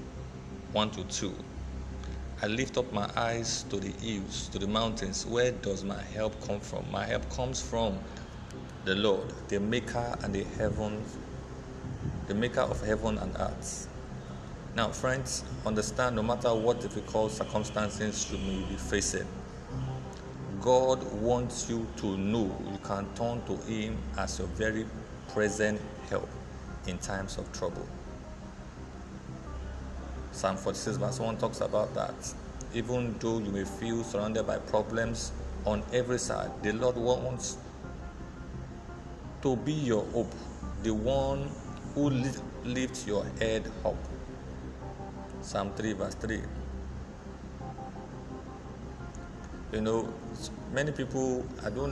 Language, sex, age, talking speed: English, male, 50-69, 125 wpm